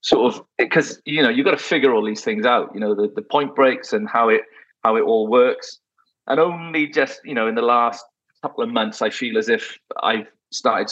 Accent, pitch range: British, 115-160 Hz